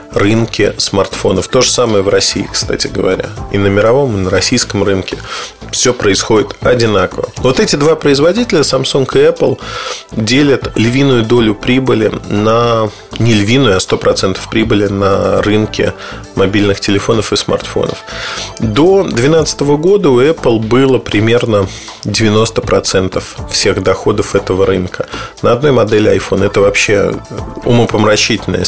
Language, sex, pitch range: Russian, male, 105-135 Hz